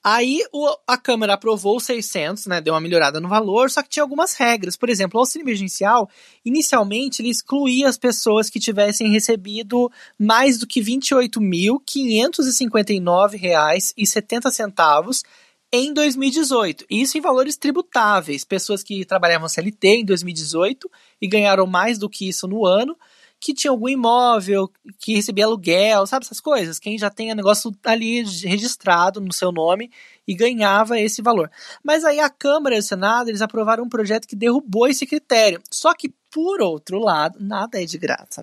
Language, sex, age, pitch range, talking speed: Portuguese, male, 20-39, 200-255 Hz, 160 wpm